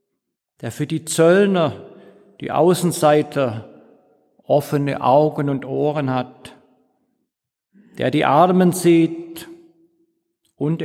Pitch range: 130-175 Hz